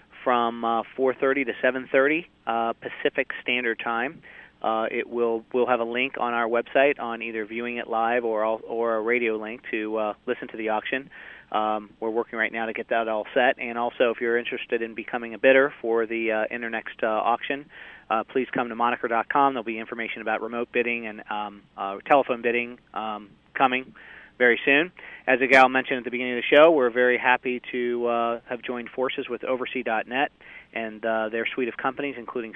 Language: English